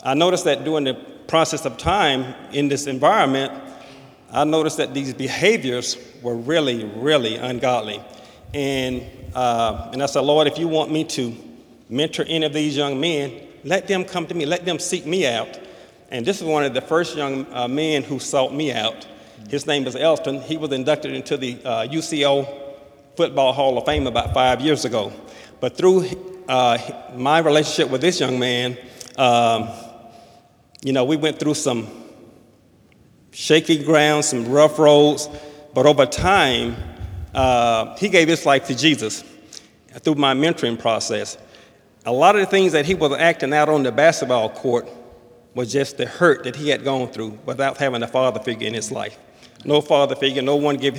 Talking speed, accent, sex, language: 180 wpm, American, male, English